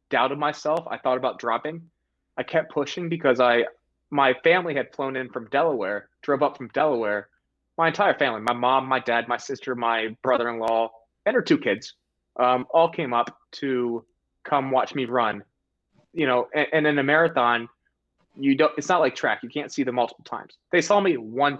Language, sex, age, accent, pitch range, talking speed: English, male, 20-39, American, 120-150 Hz, 190 wpm